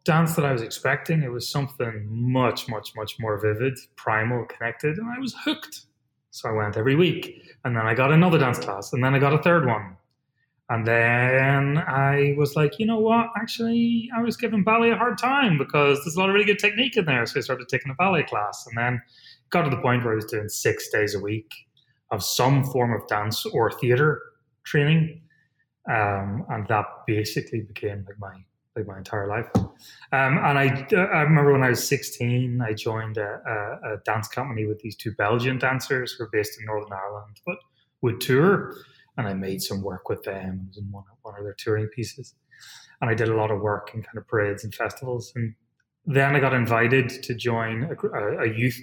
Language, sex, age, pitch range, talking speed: English, male, 30-49, 110-150 Hz, 210 wpm